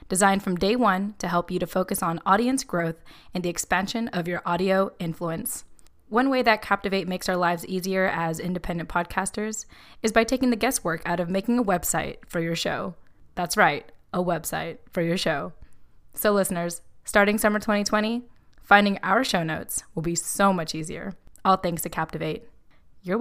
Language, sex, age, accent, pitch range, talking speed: English, female, 20-39, American, 175-220 Hz, 180 wpm